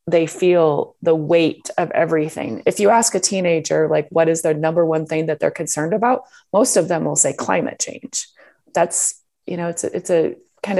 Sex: female